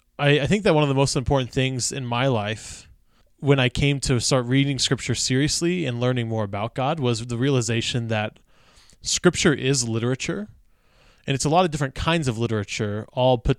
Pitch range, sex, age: 110-140 Hz, male, 20-39